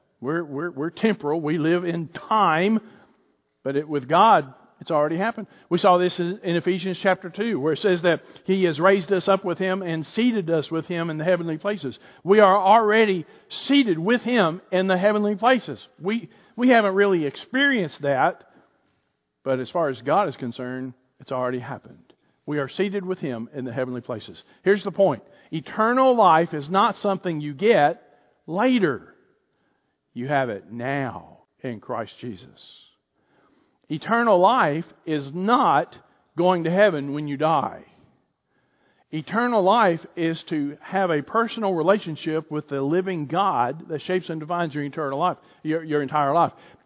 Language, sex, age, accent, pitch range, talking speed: English, male, 50-69, American, 150-200 Hz, 165 wpm